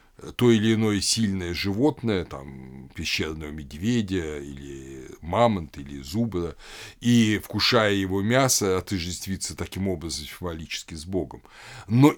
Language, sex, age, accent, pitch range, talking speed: Russian, male, 60-79, native, 90-130 Hz, 115 wpm